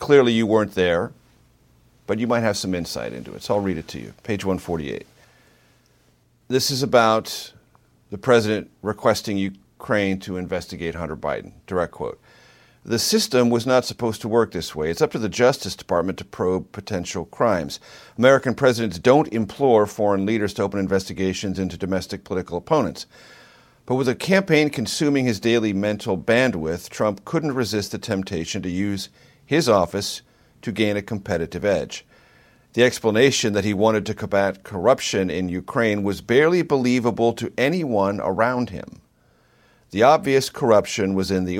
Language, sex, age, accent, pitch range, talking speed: English, male, 50-69, American, 95-120 Hz, 160 wpm